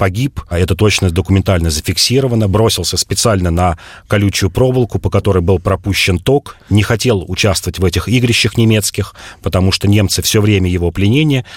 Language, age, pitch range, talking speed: Russian, 30-49, 90-110 Hz, 155 wpm